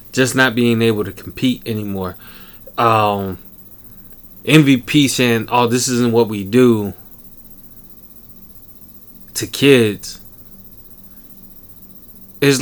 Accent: American